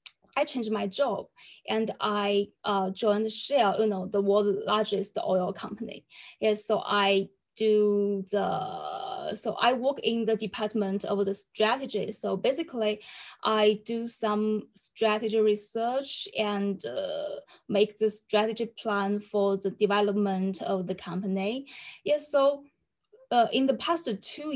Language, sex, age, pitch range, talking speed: English, female, 20-39, 200-230 Hz, 135 wpm